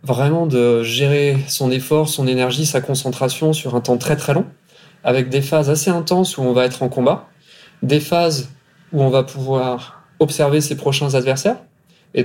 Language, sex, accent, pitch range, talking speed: French, male, French, 125-160 Hz, 180 wpm